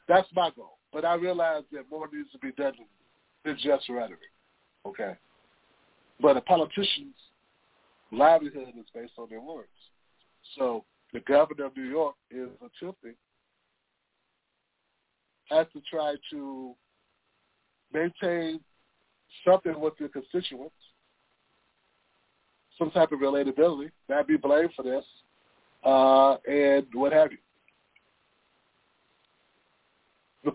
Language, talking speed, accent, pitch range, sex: English, 110 wpm, American, 140-180 Hz, male